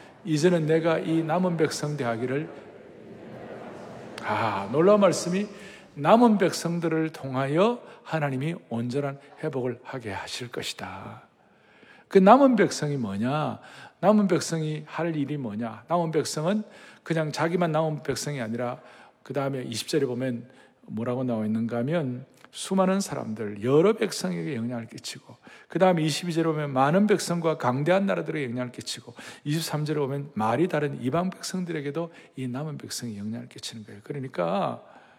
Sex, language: male, Korean